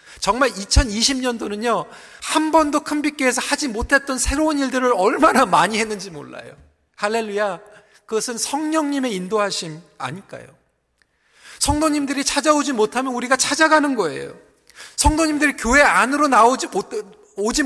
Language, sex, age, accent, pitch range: Korean, male, 40-59, native, 210-275 Hz